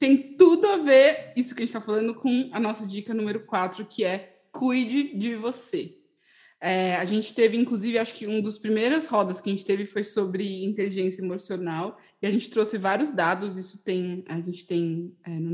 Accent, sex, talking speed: Brazilian, female, 195 wpm